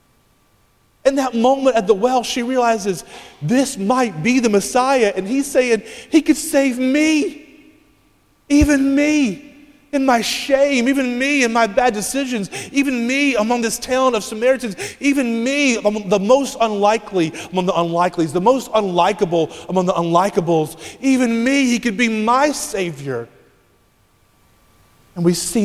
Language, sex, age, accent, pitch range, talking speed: English, male, 30-49, American, 175-255 Hz, 145 wpm